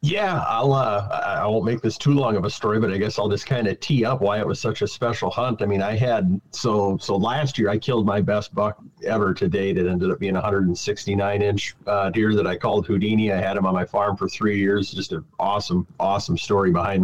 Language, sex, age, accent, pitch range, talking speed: English, male, 40-59, American, 100-115 Hz, 255 wpm